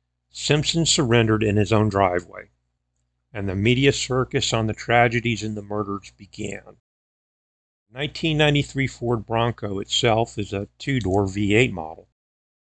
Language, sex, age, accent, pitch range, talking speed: English, male, 50-69, American, 90-120 Hz, 125 wpm